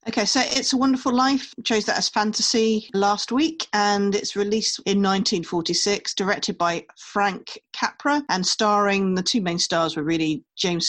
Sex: female